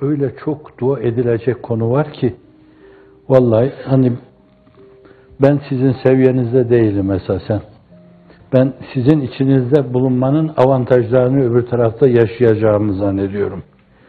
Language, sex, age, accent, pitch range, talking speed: Turkish, male, 60-79, native, 110-135 Hz, 100 wpm